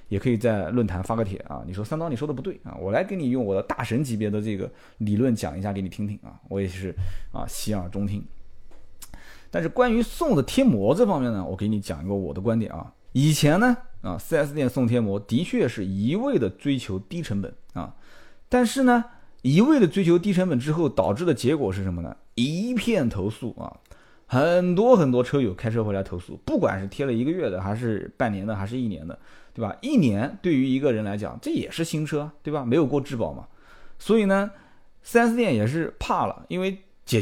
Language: Chinese